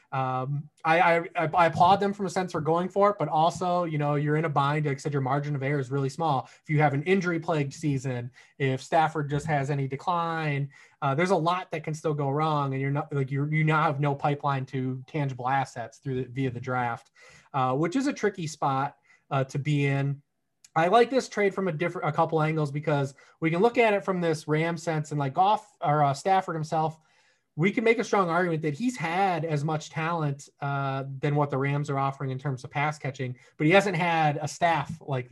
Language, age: English, 20-39